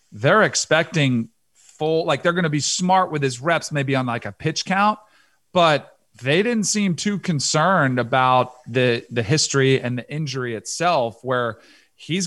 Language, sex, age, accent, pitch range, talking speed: English, male, 40-59, American, 130-160 Hz, 165 wpm